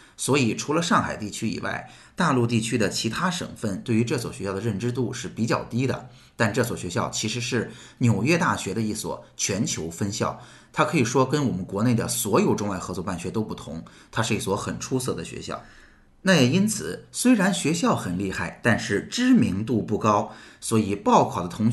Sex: male